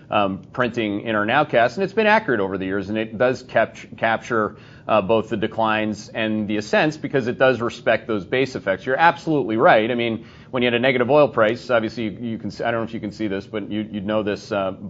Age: 30-49